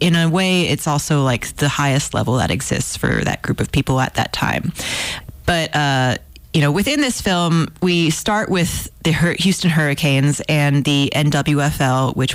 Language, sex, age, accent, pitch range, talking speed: English, female, 30-49, American, 135-160 Hz, 175 wpm